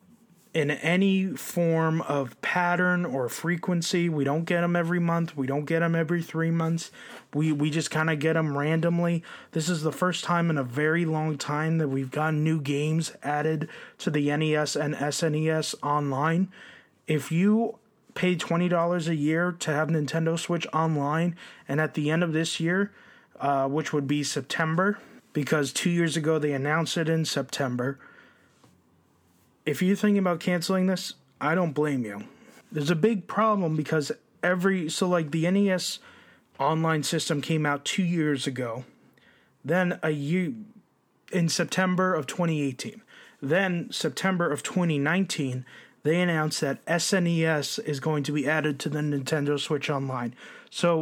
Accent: American